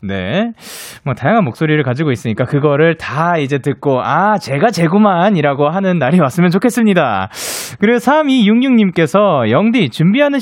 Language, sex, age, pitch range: Korean, male, 20-39, 140-230 Hz